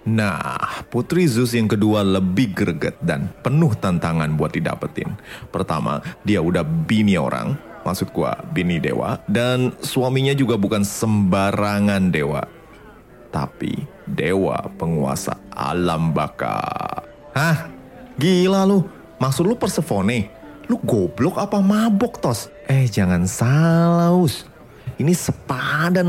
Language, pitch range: Indonesian, 100-135 Hz